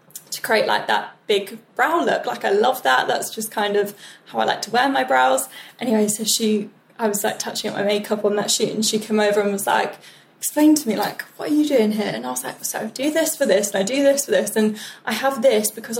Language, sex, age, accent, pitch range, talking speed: English, female, 10-29, British, 200-230 Hz, 270 wpm